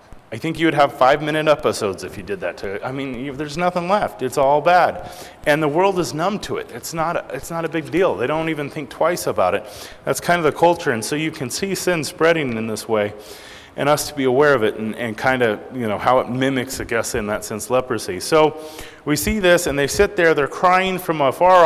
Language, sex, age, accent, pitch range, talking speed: English, male, 30-49, American, 140-170 Hz, 255 wpm